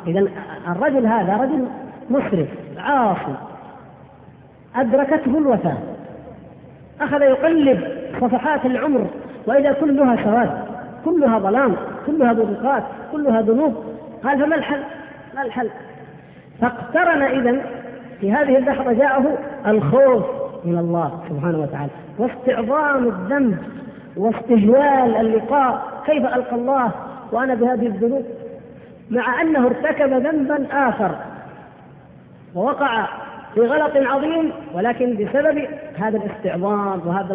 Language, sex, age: Arabic, female, 40-59